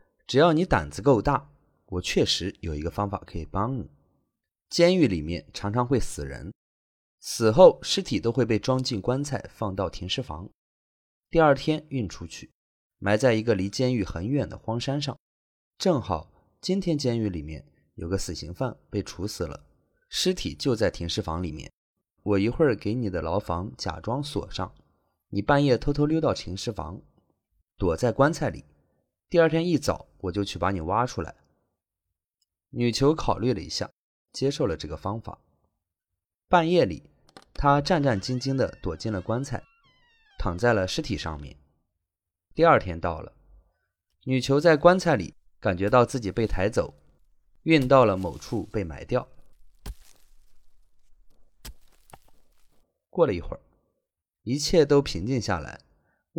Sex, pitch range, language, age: male, 85-130 Hz, Chinese, 20-39